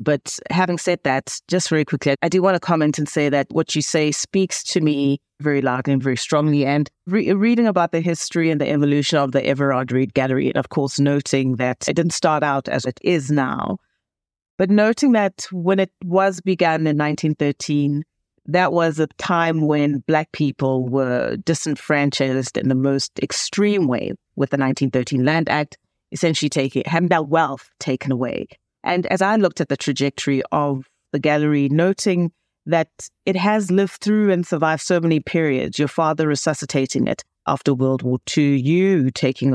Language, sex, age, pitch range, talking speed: English, female, 30-49, 140-175 Hz, 180 wpm